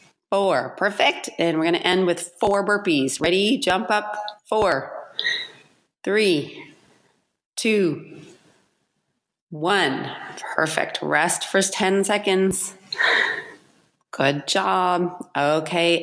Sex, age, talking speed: female, 30-49, 95 wpm